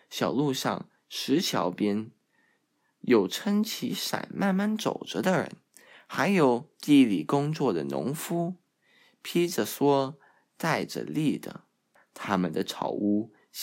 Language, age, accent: Chinese, 20-39, native